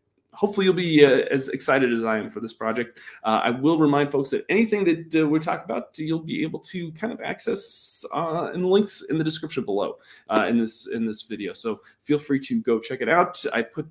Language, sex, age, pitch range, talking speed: English, male, 20-39, 120-185 Hz, 235 wpm